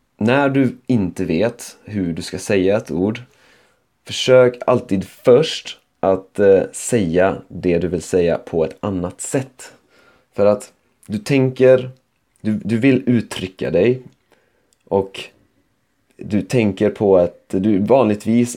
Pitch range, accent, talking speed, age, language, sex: 95-125 Hz, native, 125 wpm, 30-49, Swedish, male